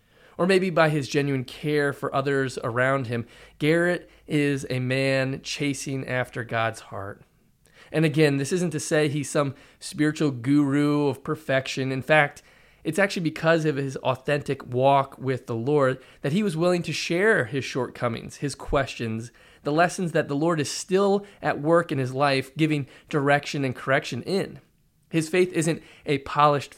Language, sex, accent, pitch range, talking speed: English, male, American, 130-155 Hz, 165 wpm